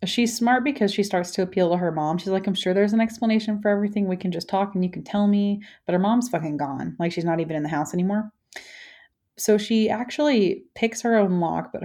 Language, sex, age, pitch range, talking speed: English, female, 30-49, 180-230 Hz, 250 wpm